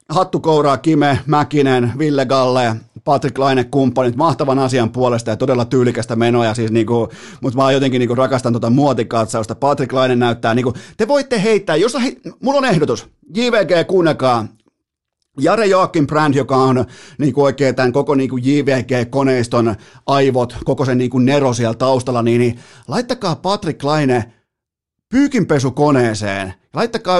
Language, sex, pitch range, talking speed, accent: Finnish, male, 125-170 Hz, 140 wpm, native